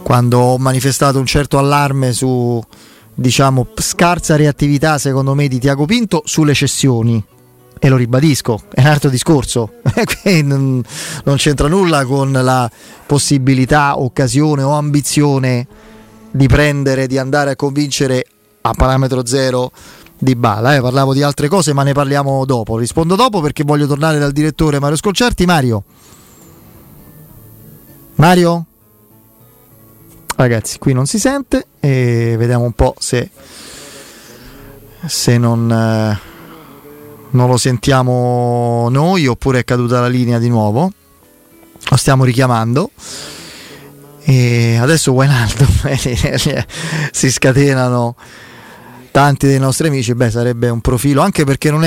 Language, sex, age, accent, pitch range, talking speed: Italian, male, 30-49, native, 125-145 Hz, 125 wpm